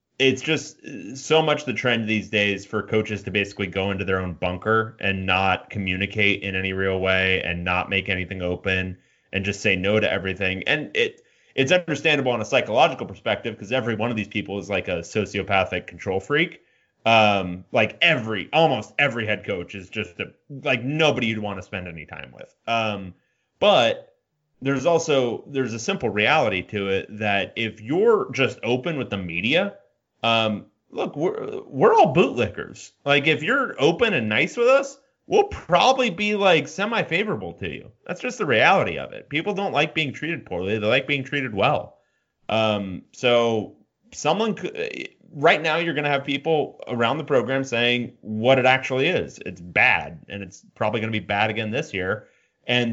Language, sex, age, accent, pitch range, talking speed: English, male, 30-49, American, 100-145 Hz, 185 wpm